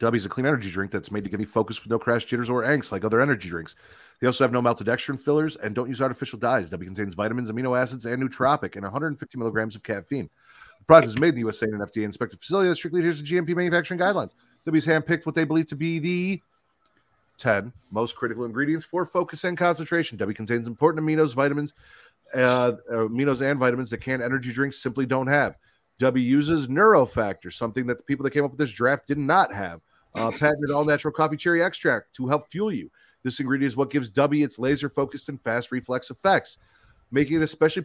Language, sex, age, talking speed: English, male, 30-49, 220 wpm